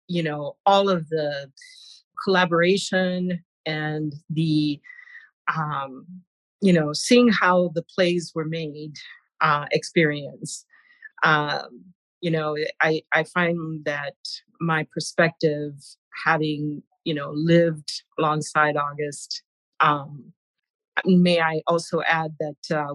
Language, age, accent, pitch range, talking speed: English, 40-59, American, 150-190 Hz, 105 wpm